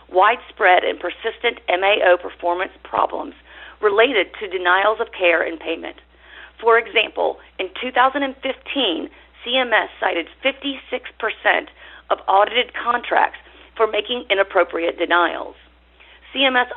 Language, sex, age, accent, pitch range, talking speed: English, female, 40-59, American, 180-270 Hz, 100 wpm